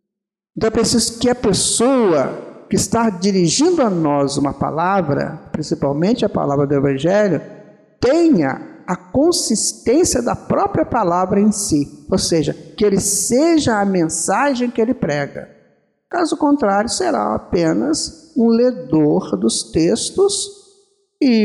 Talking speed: 125 wpm